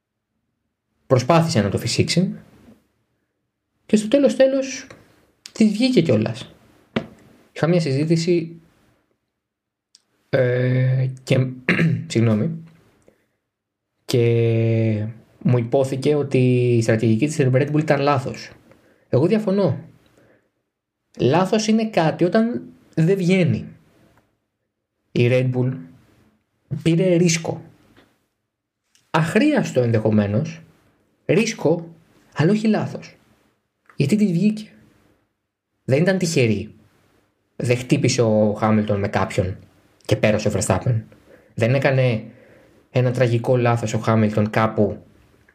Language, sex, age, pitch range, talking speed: Greek, male, 20-39, 110-155 Hz, 90 wpm